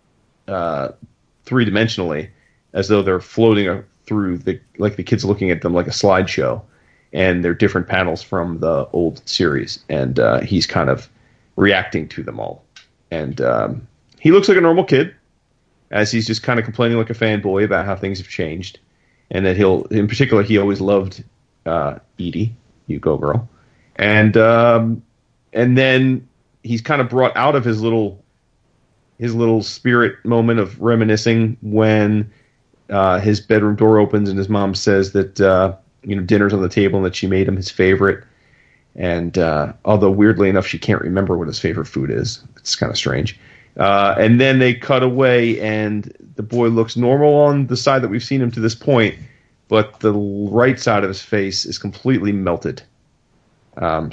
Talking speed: 180 wpm